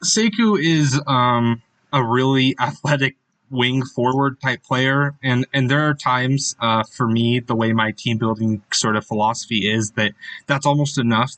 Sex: male